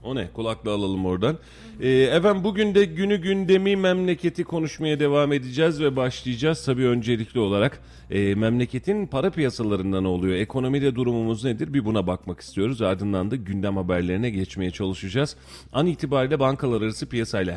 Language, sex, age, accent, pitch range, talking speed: Turkish, male, 40-59, native, 100-135 Hz, 145 wpm